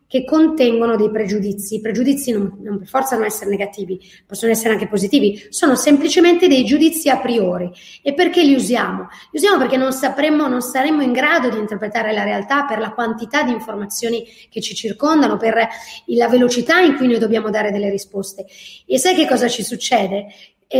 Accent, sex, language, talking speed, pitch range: native, female, Italian, 185 wpm, 220-285 Hz